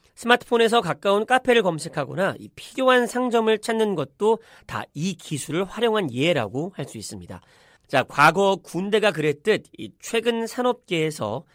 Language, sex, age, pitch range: Korean, male, 40-59, 150-225 Hz